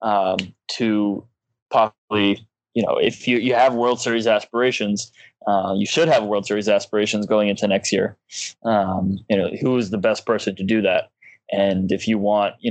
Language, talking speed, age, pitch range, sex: English, 185 wpm, 20-39, 105-125 Hz, male